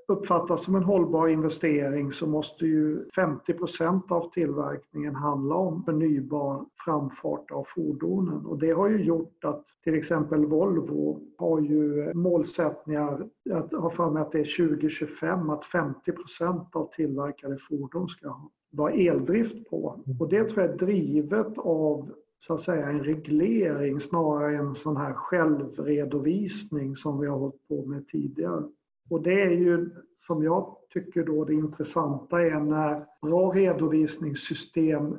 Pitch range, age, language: 150-170 Hz, 50-69, Swedish